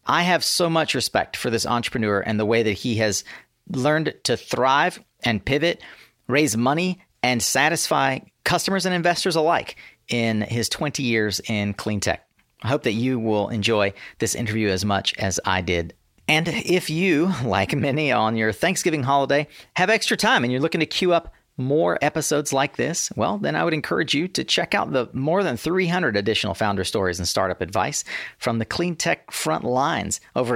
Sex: male